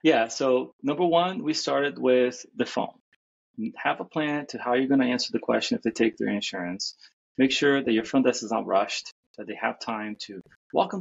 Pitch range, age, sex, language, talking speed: 105-140 Hz, 30-49, male, English, 215 wpm